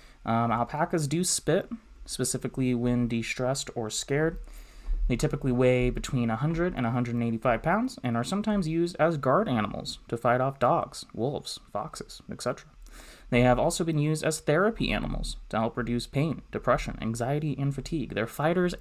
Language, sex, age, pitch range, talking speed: English, male, 20-39, 115-155 Hz, 155 wpm